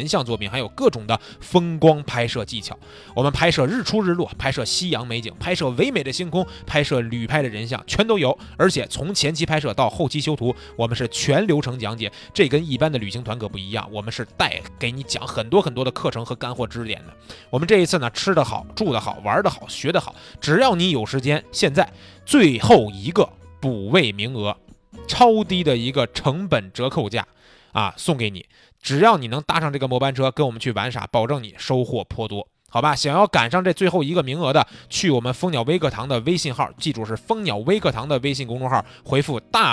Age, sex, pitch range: 20-39, male, 115-150 Hz